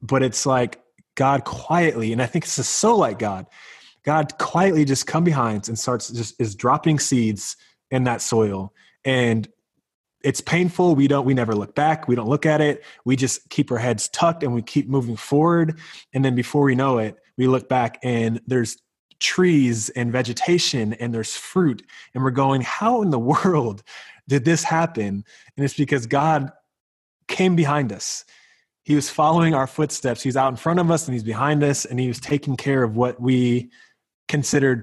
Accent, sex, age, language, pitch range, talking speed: American, male, 20-39, English, 120-145 Hz, 190 wpm